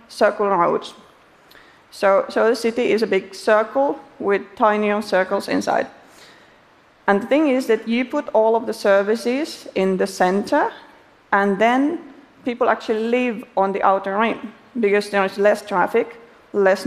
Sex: female